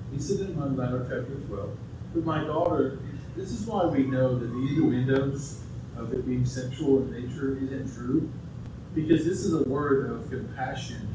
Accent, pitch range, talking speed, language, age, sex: American, 120-140 Hz, 185 wpm, English, 40-59, male